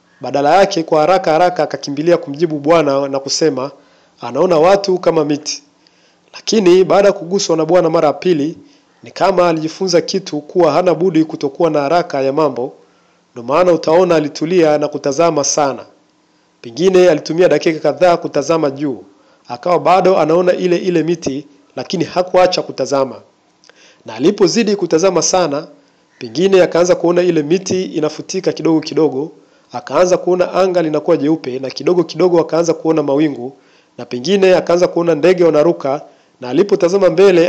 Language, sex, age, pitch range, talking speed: Swahili, male, 50-69, 150-180 Hz, 140 wpm